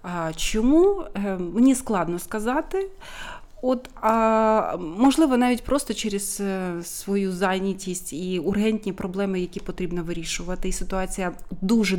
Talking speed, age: 100 wpm, 30-49